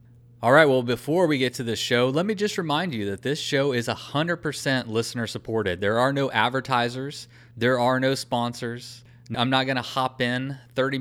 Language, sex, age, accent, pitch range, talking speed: English, male, 30-49, American, 120-135 Hz, 205 wpm